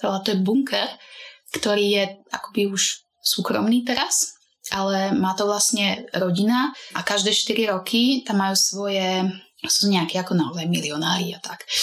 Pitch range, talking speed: 185-210 Hz, 145 wpm